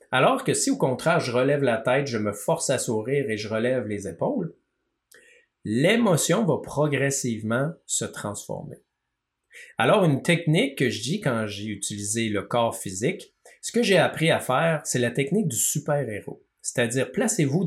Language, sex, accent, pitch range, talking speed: French, male, Canadian, 115-160 Hz, 165 wpm